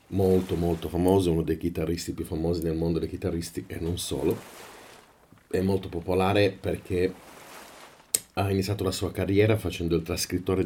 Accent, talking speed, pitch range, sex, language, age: native, 150 wpm, 85-95 Hz, male, Italian, 40-59